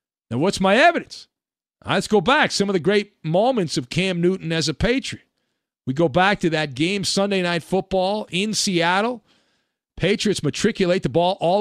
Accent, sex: American, male